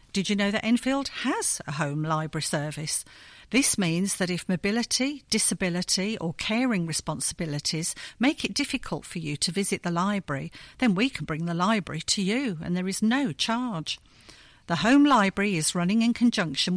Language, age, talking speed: English, 50-69, 170 wpm